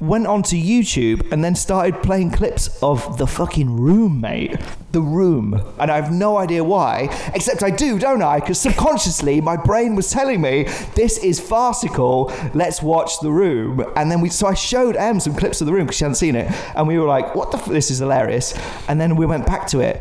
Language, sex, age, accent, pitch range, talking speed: English, male, 30-49, British, 125-175 Hz, 220 wpm